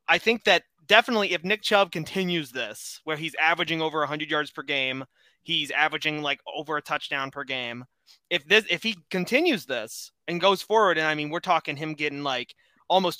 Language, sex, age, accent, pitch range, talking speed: English, male, 20-39, American, 140-175 Hz, 195 wpm